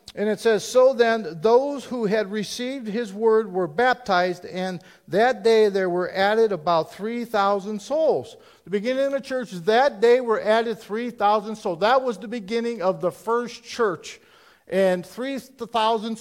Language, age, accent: English, 50-69, American